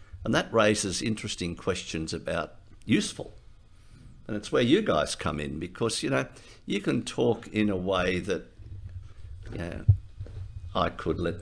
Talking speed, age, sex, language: 145 wpm, 60-79, male, English